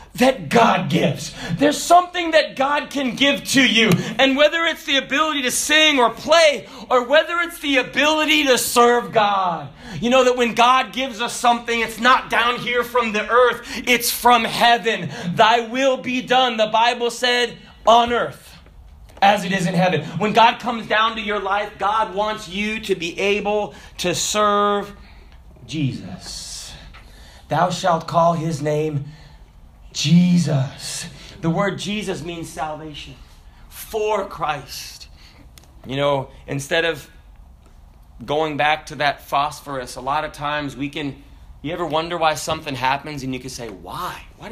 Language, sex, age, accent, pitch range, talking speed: English, male, 30-49, American, 150-240 Hz, 155 wpm